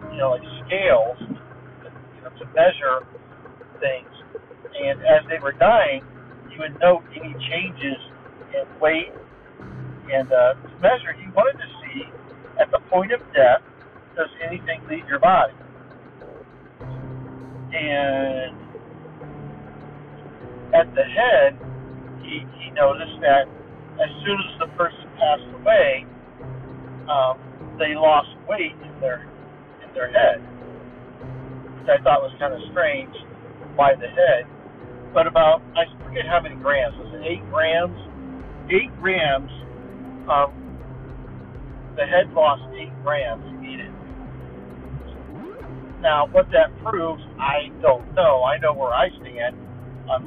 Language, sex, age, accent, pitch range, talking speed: English, male, 60-79, American, 125-165 Hz, 130 wpm